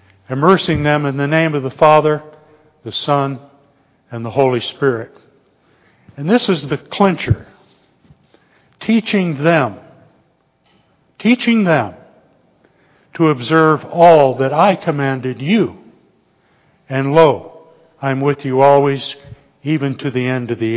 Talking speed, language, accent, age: 125 wpm, English, American, 60-79